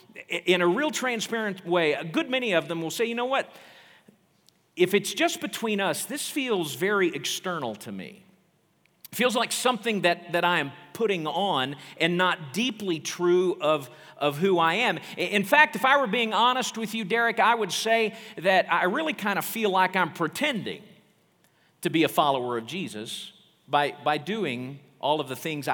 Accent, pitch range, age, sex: American, 145-210 Hz, 50-69, male